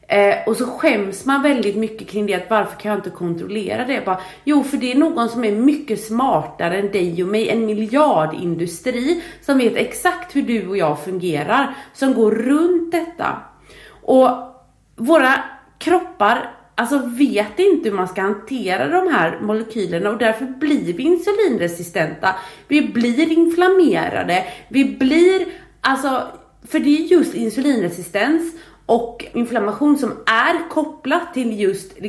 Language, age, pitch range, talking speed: English, 30-49, 205-310 Hz, 145 wpm